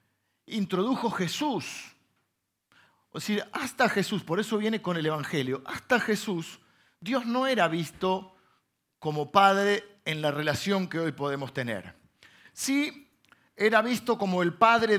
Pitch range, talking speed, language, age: 130-195 Hz, 140 wpm, Spanish, 50-69